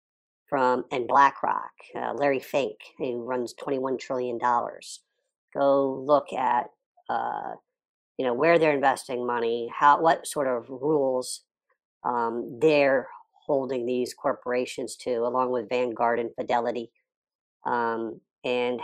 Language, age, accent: English, 50-69, American